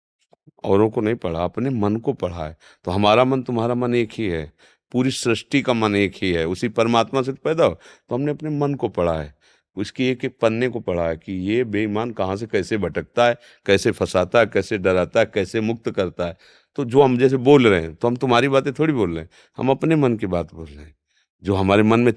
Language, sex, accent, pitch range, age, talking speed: Hindi, male, native, 95-135 Hz, 40-59, 240 wpm